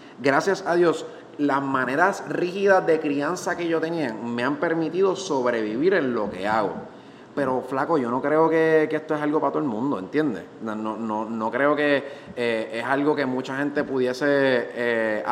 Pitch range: 140-195 Hz